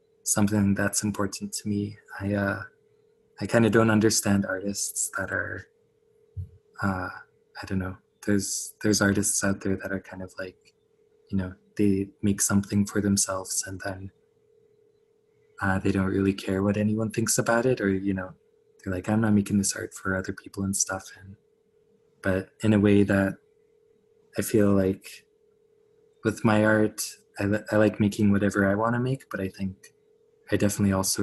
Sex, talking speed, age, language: male, 175 wpm, 20-39, English